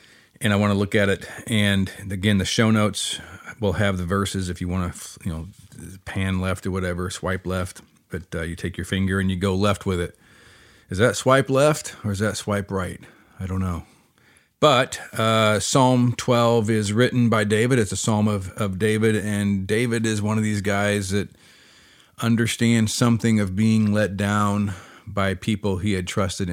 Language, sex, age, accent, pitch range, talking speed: English, male, 40-59, American, 95-110 Hz, 190 wpm